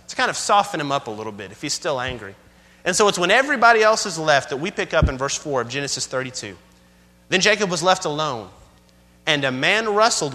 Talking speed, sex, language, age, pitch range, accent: 230 wpm, male, English, 30-49, 130-200 Hz, American